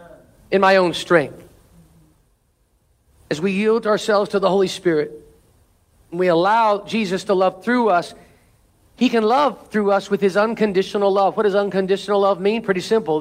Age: 50-69